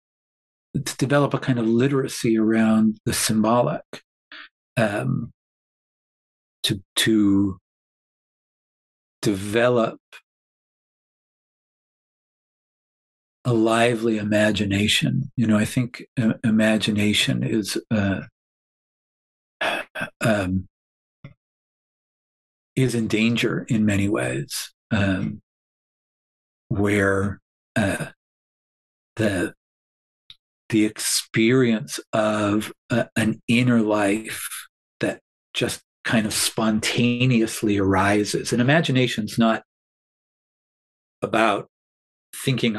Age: 50-69